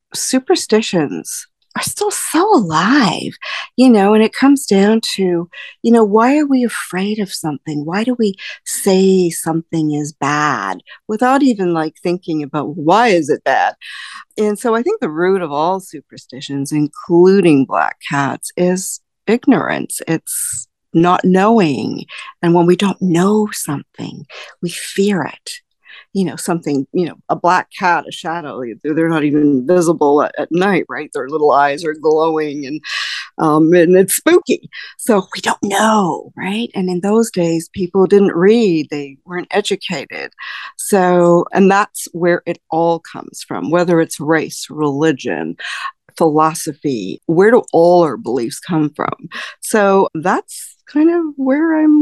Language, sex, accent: English, female, American